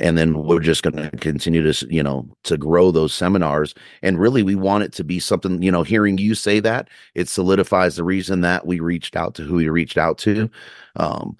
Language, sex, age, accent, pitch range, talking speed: English, male, 30-49, American, 80-90 Hz, 225 wpm